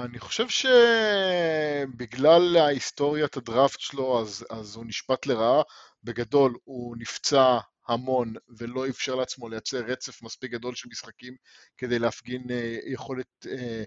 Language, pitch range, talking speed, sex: English, 120-135 Hz, 115 wpm, male